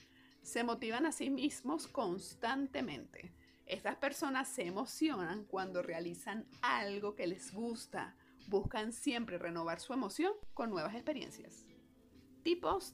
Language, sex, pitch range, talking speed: Spanish, female, 200-285 Hz, 115 wpm